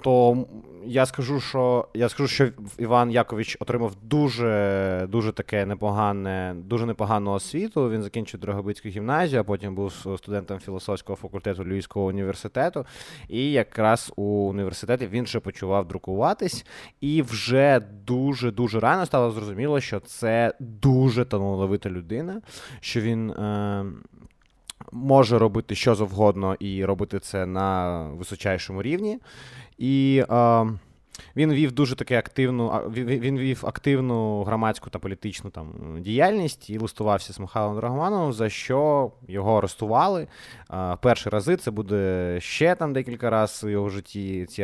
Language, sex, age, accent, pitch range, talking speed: Ukrainian, male, 20-39, native, 100-125 Hz, 130 wpm